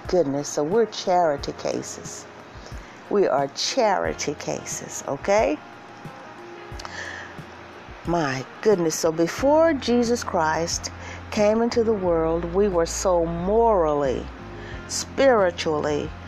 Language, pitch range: English, 160-220 Hz